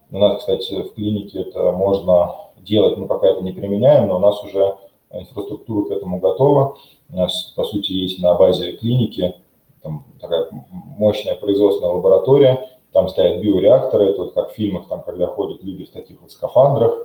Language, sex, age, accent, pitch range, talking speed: Russian, male, 20-39, native, 95-120 Hz, 175 wpm